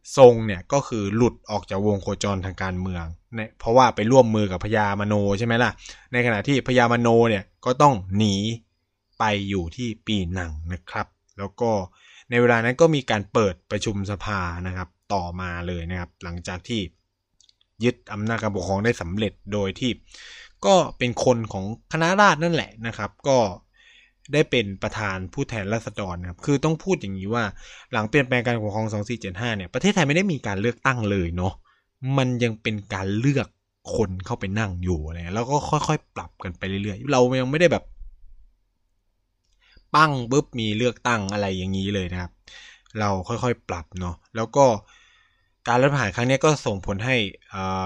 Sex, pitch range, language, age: male, 95-120 Hz, Thai, 20-39